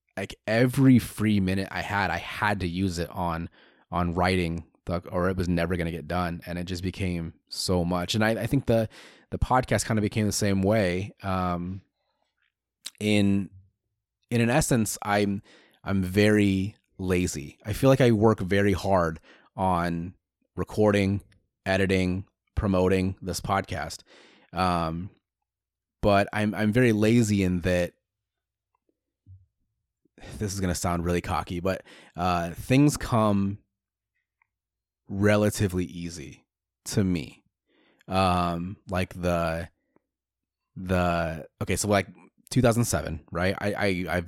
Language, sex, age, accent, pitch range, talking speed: English, male, 30-49, American, 90-105 Hz, 135 wpm